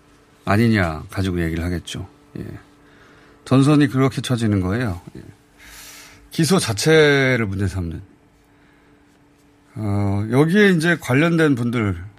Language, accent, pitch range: Korean, native, 95-145 Hz